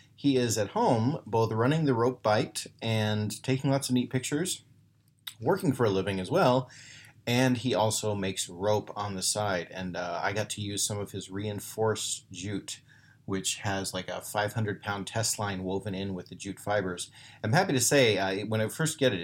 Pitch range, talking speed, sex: 95-130 Hz, 195 wpm, male